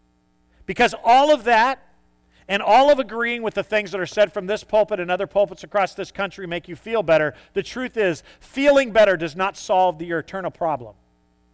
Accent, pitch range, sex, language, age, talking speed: American, 155-240 Hz, male, English, 40-59, 200 wpm